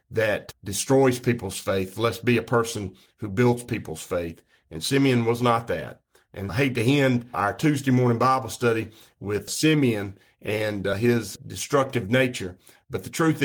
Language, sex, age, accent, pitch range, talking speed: English, male, 50-69, American, 100-125 Hz, 165 wpm